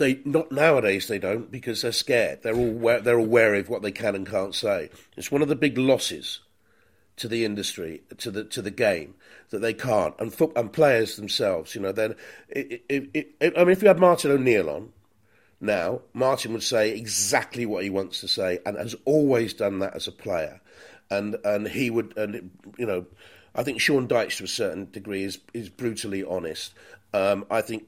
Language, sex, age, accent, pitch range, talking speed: English, male, 40-59, British, 100-135 Hz, 200 wpm